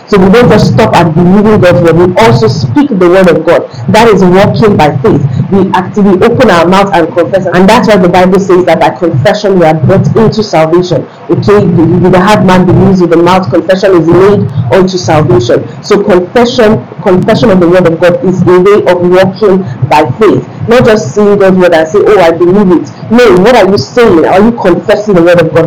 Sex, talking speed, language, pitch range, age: female, 220 wpm, English, 170-205 Hz, 40-59